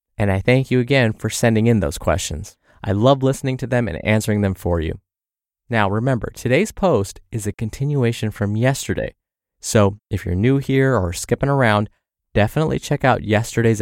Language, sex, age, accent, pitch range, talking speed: English, male, 20-39, American, 95-135 Hz, 180 wpm